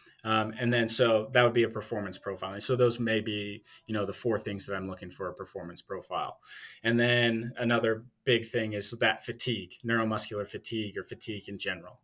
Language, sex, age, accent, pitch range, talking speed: English, male, 20-39, American, 100-120 Hz, 205 wpm